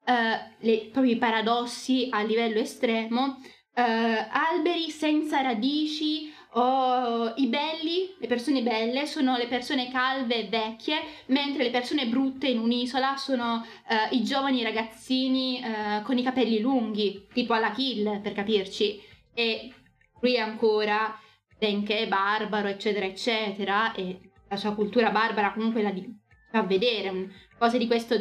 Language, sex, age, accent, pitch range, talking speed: Italian, female, 10-29, native, 215-255 Hz, 140 wpm